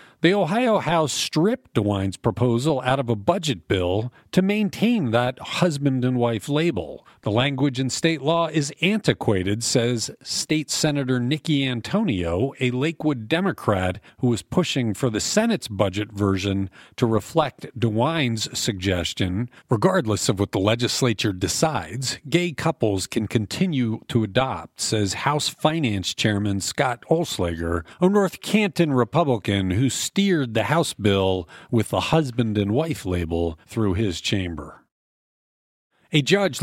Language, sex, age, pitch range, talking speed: English, male, 50-69, 110-155 Hz, 135 wpm